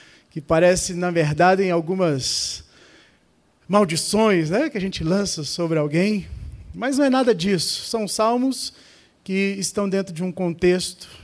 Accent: Brazilian